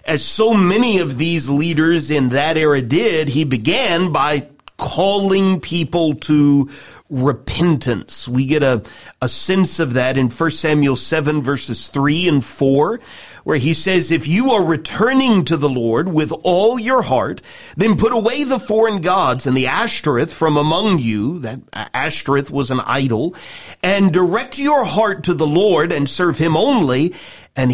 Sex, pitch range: male, 140-190 Hz